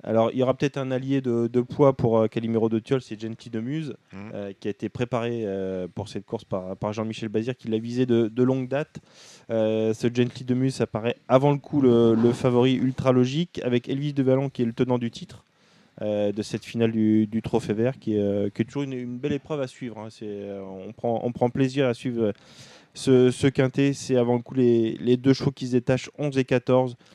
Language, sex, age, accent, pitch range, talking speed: French, male, 20-39, French, 110-130 Hz, 240 wpm